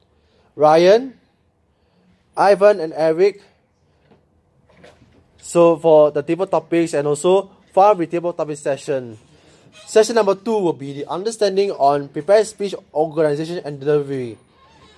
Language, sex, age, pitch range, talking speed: English, male, 20-39, 150-195 Hz, 115 wpm